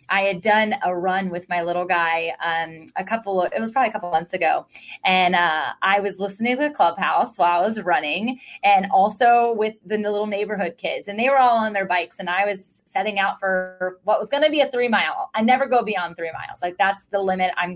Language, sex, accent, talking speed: English, female, American, 240 wpm